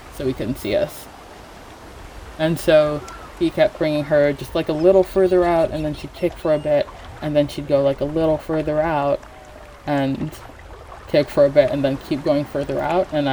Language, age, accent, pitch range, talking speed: English, 20-39, American, 140-180 Hz, 205 wpm